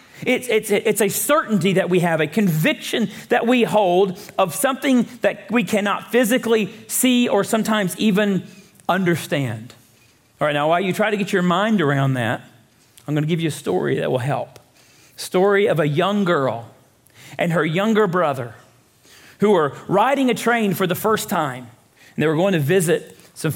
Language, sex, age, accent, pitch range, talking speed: English, male, 40-59, American, 170-230 Hz, 175 wpm